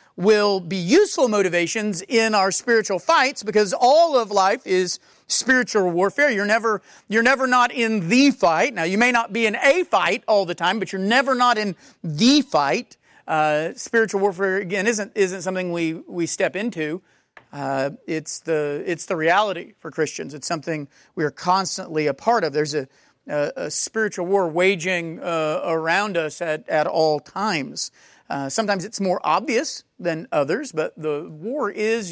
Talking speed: 180 wpm